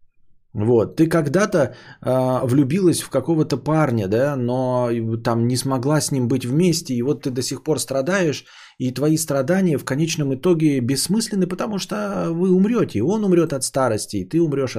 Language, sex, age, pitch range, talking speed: Bulgarian, male, 20-39, 120-170 Hz, 175 wpm